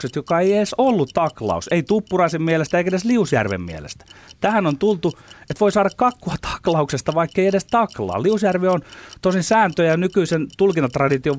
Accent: native